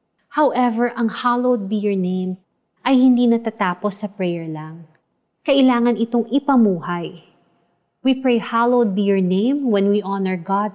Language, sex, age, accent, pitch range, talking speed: Filipino, female, 30-49, native, 185-240 Hz, 140 wpm